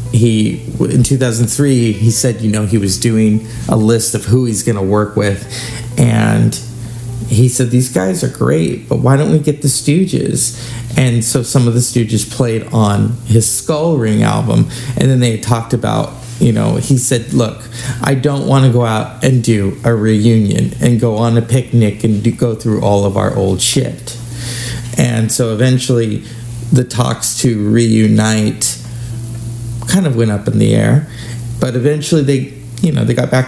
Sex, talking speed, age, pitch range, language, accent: male, 180 wpm, 40-59, 110-125 Hz, English, American